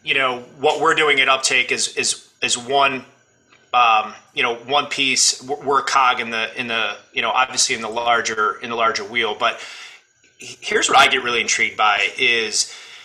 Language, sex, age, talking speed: English, male, 30-49, 195 wpm